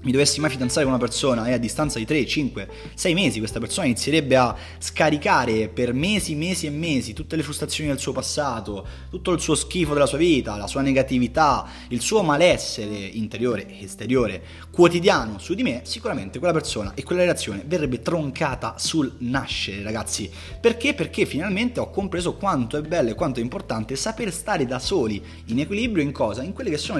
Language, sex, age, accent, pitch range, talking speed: Italian, male, 20-39, native, 110-165 Hz, 190 wpm